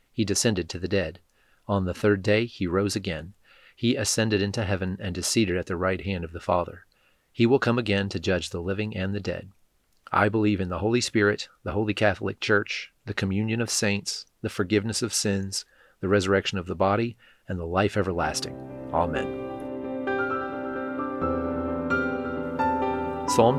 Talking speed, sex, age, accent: 170 wpm, male, 40-59, American